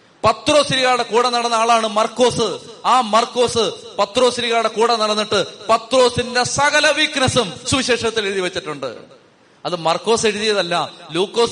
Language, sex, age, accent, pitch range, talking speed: Malayalam, male, 30-49, native, 180-230 Hz, 105 wpm